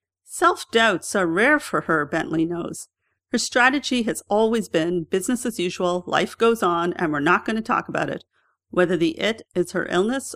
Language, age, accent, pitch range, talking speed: English, 40-59, American, 170-220 Hz, 185 wpm